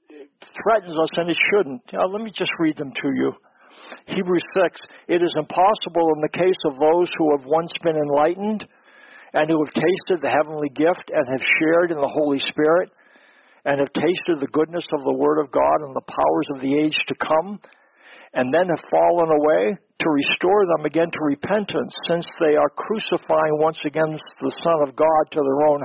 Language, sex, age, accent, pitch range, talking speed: English, male, 60-79, American, 150-180 Hz, 195 wpm